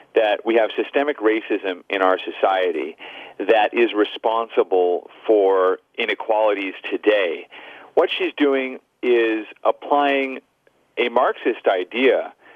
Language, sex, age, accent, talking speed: English, male, 40-59, American, 105 wpm